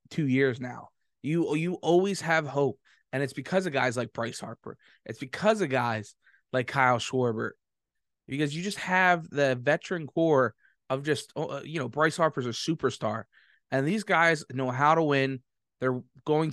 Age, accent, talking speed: 20-39, American, 170 wpm